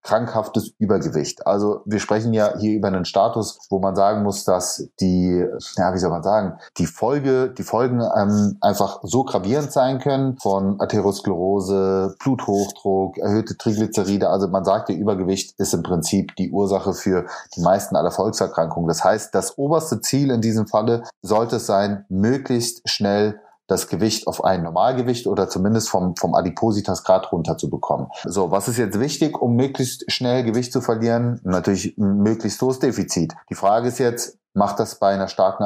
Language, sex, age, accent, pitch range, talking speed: German, male, 30-49, German, 95-120 Hz, 170 wpm